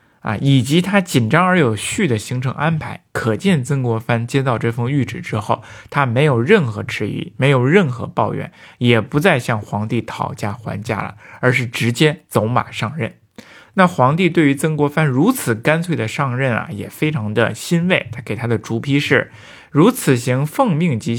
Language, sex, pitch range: Chinese, male, 115-155 Hz